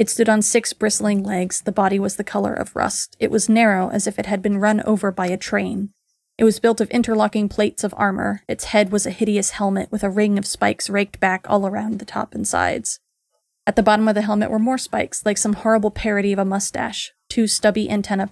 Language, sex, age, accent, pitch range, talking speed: English, female, 30-49, American, 200-230 Hz, 235 wpm